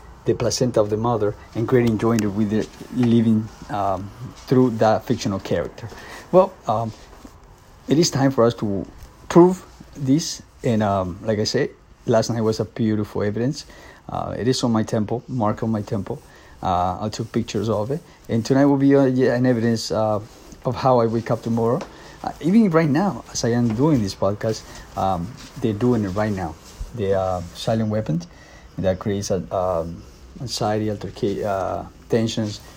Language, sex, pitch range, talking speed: English, male, 105-130 Hz, 170 wpm